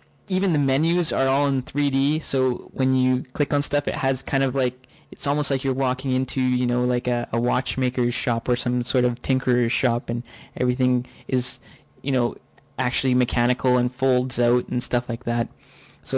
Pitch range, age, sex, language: 125-135 Hz, 20-39, male, English